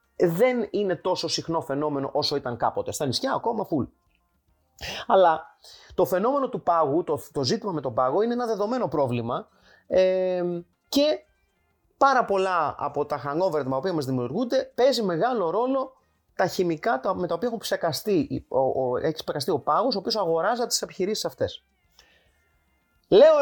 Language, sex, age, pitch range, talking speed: Greek, male, 30-49, 155-220 Hz, 145 wpm